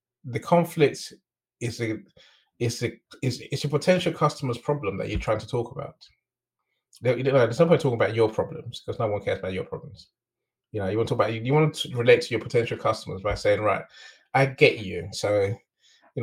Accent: British